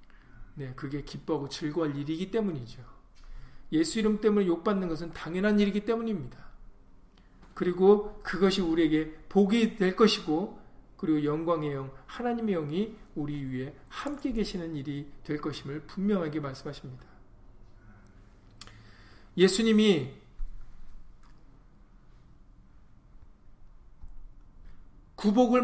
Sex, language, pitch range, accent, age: male, Korean, 135-200 Hz, native, 40-59